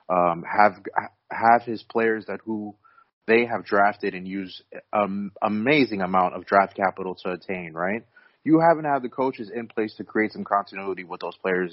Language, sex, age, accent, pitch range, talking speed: English, male, 30-49, American, 90-105 Hz, 185 wpm